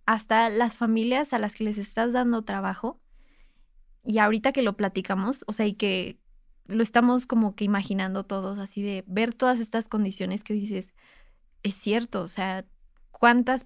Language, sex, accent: Spanish, female, Mexican